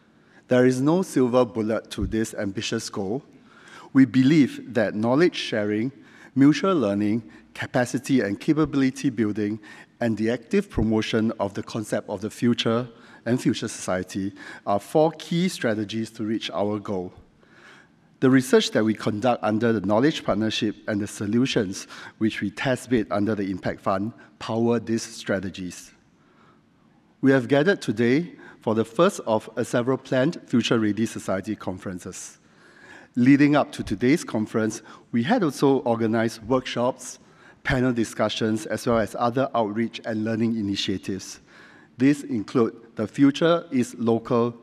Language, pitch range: English, 105-130 Hz